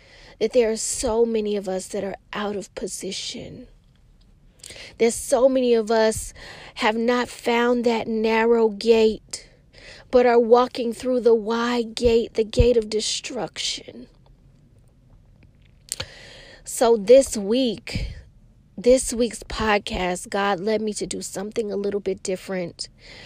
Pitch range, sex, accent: 185-225 Hz, female, American